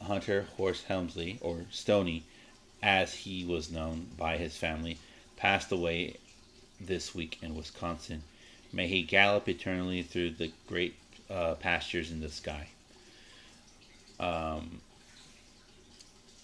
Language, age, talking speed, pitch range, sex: English, 30-49, 115 wpm, 80-95 Hz, male